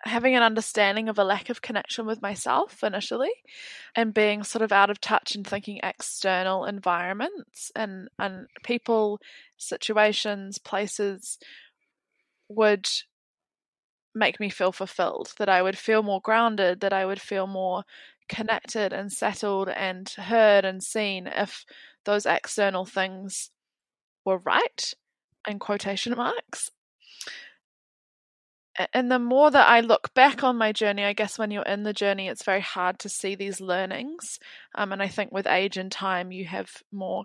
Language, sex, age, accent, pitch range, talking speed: English, female, 20-39, Australian, 190-220 Hz, 150 wpm